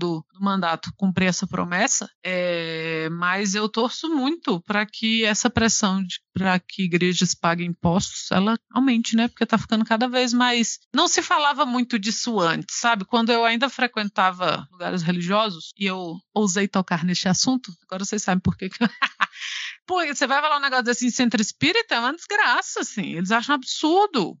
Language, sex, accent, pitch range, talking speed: Portuguese, female, Brazilian, 190-265 Hz, 170 wpm